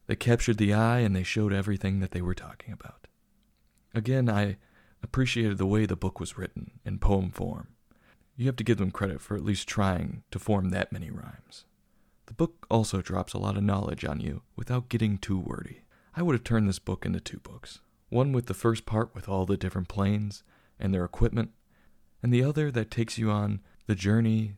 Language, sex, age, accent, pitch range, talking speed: English, male, 40-59, American, 95-115 Hz, 210 wpm